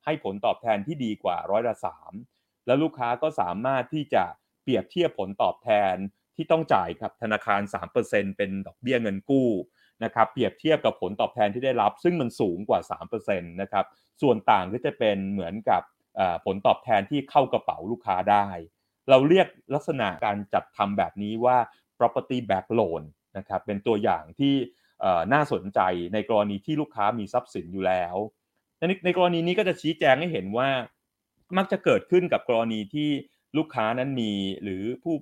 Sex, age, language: male, 30-49, Thai